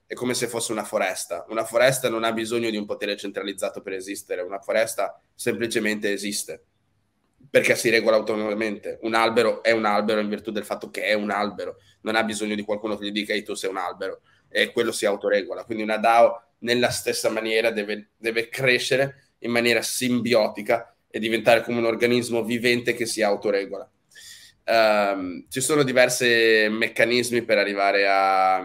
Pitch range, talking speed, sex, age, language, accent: 105-125 Hz, 175 wpm, male, 20-39, Italian, native